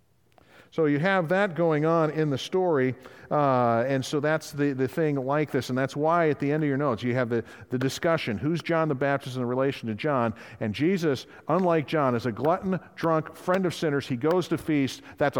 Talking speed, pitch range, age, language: 220 wpm, 135-170 Hz, 50-69, English